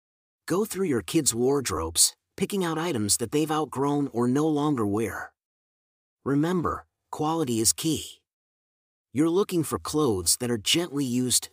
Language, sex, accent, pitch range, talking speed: English, male, American, 110-155 Hz, 140 wpm